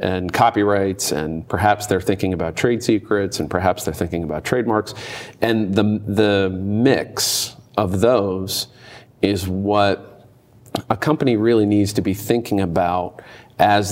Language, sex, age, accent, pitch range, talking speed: English, male, 40-59, American, 95-110 Hz, 140 wpm